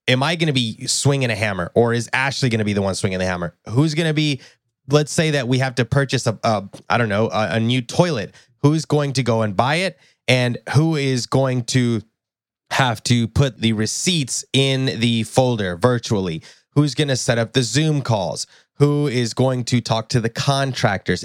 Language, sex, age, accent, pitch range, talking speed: English, male, 20-39, American, 115-145 Hz, 215 wpm